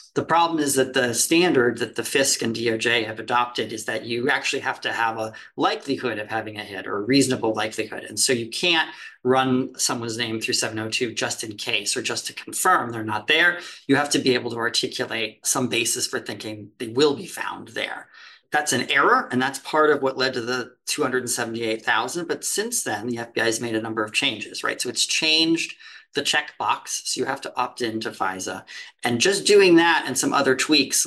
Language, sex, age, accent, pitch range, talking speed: English, male, 40-59, American, 120-155 Hz, 210 wpm